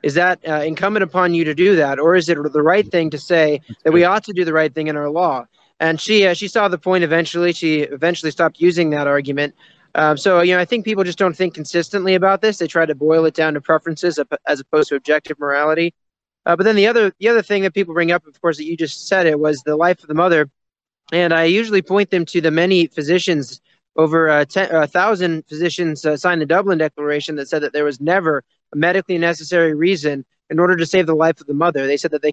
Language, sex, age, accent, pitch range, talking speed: English, male, 20-39, American, 150-180 Hz, 250 wpm